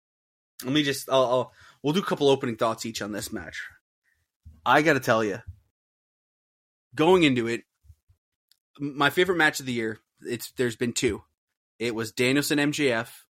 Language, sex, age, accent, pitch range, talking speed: English, male, 20-39, American, 115-165 Hz, 165 wpm